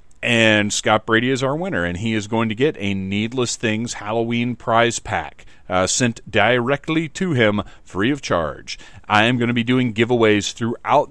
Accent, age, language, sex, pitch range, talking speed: American, 40-59, English, male, 95-125 Hz, 185 wpm